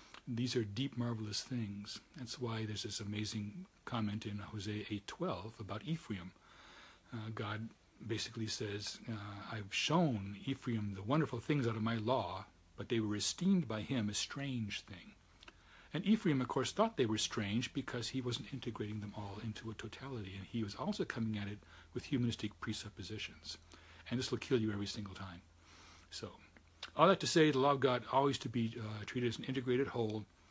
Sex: male